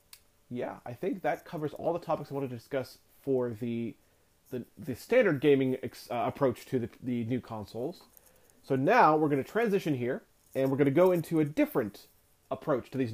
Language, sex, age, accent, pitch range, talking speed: English, male, 30-49, American, 110-150 Hz, 200 wpm